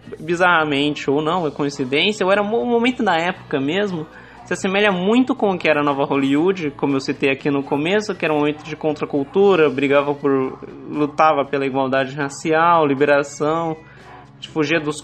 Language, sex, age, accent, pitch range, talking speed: Portuguese, male, 20-39, Brazilian, 145-175 Hz, 170 wpm